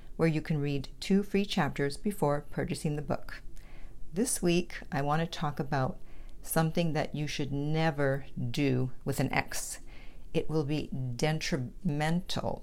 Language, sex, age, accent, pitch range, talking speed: English, female, 50-69, American, 145-185 Hz, 145 wpm